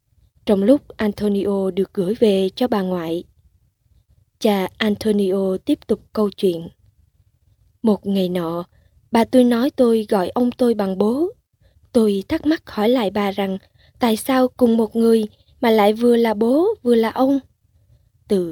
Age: 20-39